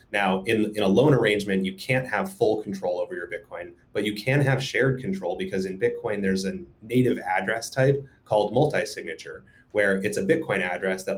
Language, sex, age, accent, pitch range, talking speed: English, male, 30-49, American, 95-120 Hz, 195 wpm